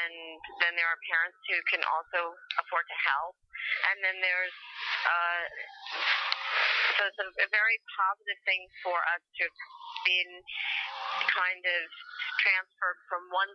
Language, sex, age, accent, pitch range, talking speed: English, female, 40-59, American, 170-220 Hz, 135 wpm